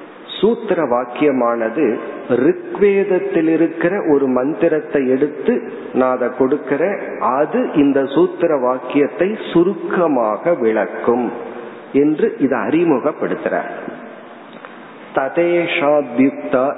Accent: native